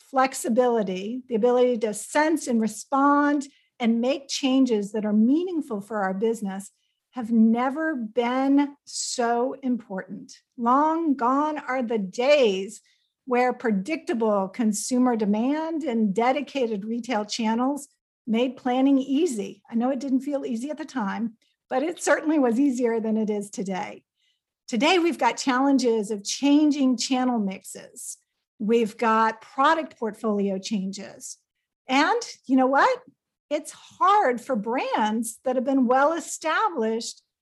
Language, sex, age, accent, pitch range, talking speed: English, female, 50-69, American, 225-280 Hz, 130 wpm